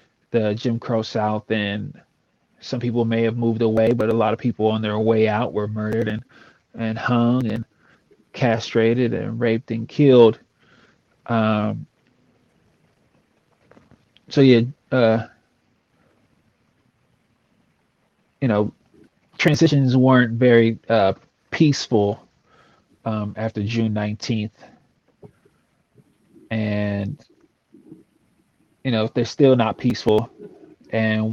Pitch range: 110-120 Hz